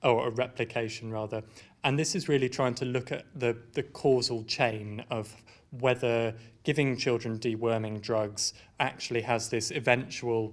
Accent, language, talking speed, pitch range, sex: British, English, 150 wpm, 115-135 Hz, male